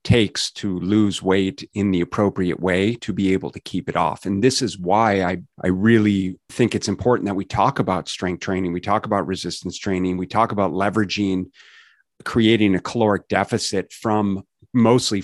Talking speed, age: 180 wpm, 30-49